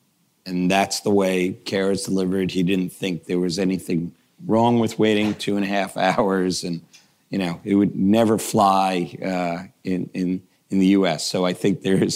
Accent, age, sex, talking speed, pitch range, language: American, 40-59, male, 190 wpm, 85-95 Hz, English